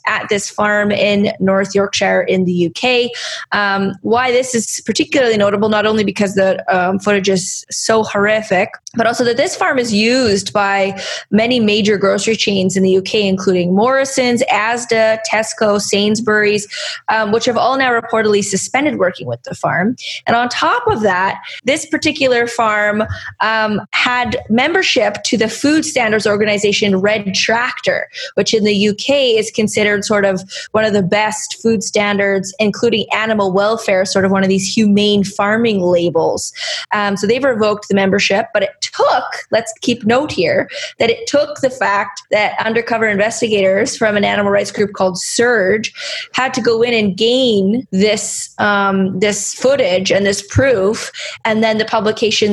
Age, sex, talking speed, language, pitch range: 20-39, female, 165 wpm, English, 200-235 Hz